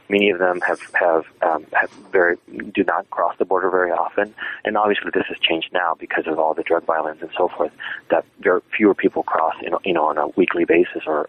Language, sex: English, male